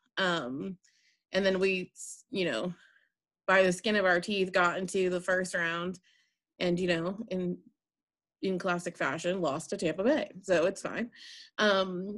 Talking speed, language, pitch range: 160 wpm, English, 185-250 Hz